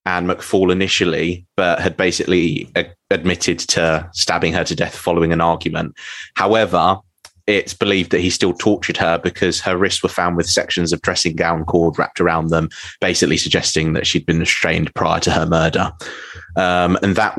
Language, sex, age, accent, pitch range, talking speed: English, male, 20-39, British, 85-100 Hz, 175 wpm